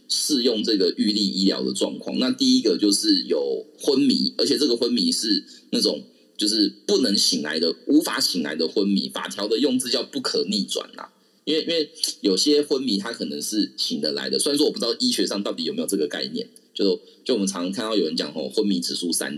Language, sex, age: Chinese, male, 30-49